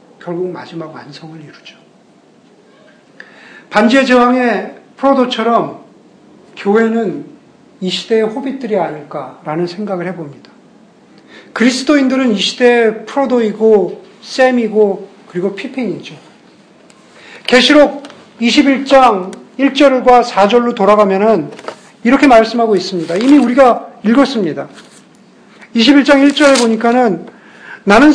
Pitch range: 205-260 Hz